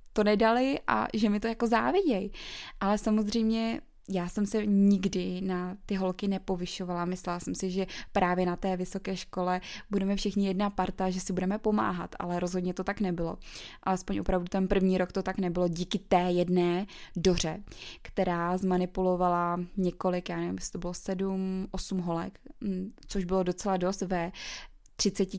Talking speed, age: 160 wpm, 20-39